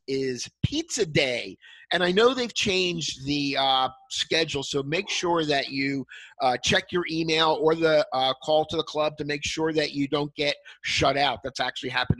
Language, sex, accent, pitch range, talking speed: English, male, American, 140-175 Hz, 190 wpm